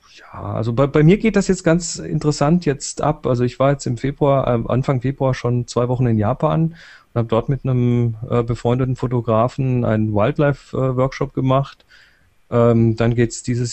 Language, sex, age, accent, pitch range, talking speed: English, male, 30-49, German, 120-145 Hz, 190 wpm